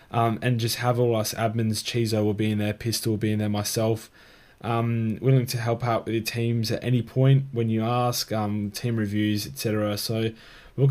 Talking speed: 210 wpm